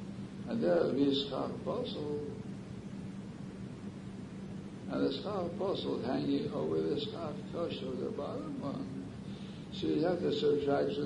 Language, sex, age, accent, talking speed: English, male, 60-79, American, 135 wpm